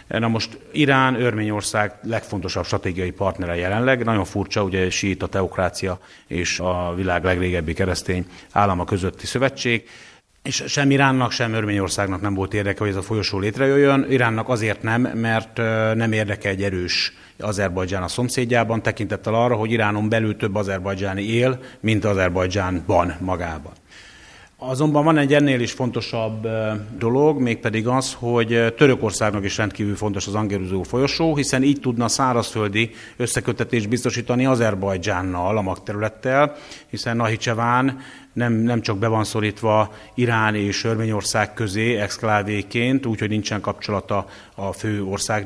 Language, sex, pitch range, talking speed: Hungarian, male, 100-120 Hz, 135 wpm